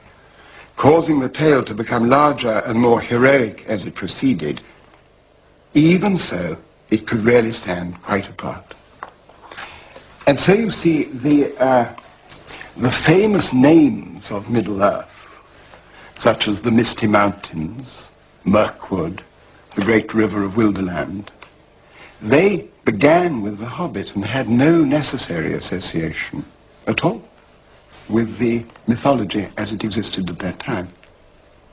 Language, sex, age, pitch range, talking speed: English, male, 60-79, 105-135 Hz, 120 wpm